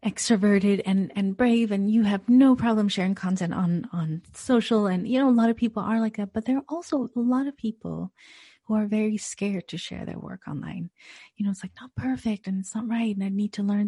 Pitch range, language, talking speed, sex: 175-225 Hz, English, 240 wpm, female